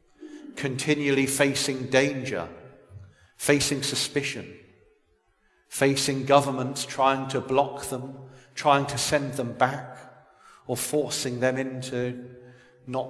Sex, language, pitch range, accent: male, English, 130-150 Hz, British